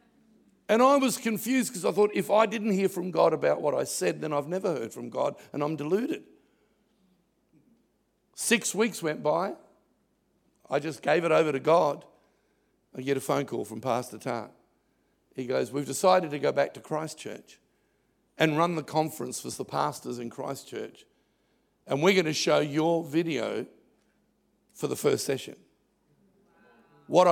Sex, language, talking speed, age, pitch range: male, English, 165 wpm, 50-69, 155-205 Hz